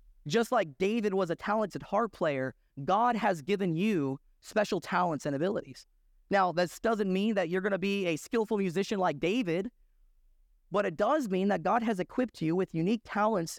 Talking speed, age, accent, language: 185 wpm, 30-49, American, English